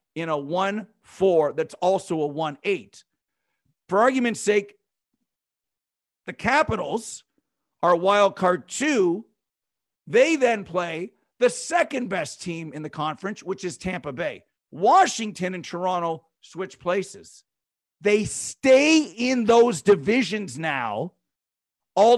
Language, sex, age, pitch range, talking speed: English, male, 50-69, 170-245 Hz, 115 wpm